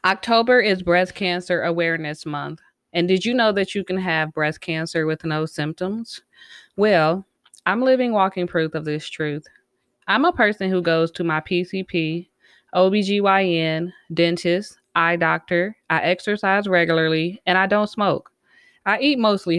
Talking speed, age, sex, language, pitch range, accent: 150 wpm, 20-39, female, English, 160-195 Hz, American